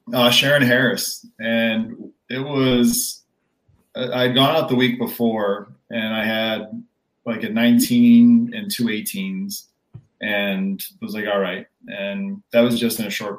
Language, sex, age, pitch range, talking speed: English, male, 30-49, 100-145 Hz, 150 wpm